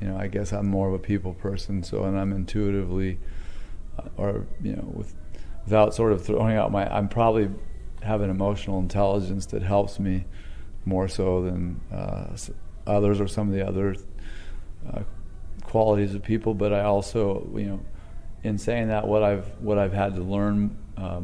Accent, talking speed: American, 180 wpm